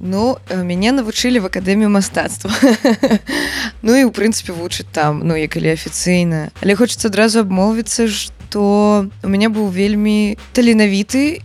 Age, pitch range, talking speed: 20-39, 180-210 Hz, 135 wpm